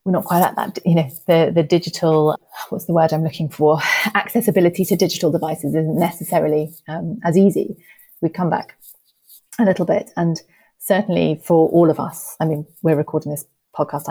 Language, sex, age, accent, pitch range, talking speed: English, female, 30-49, British, 150-175 Hz, 185 wpm